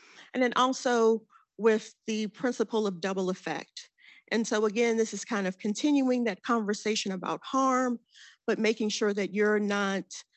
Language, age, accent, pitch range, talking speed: English, 40-59, American, 195-235 Hz, 155 wpm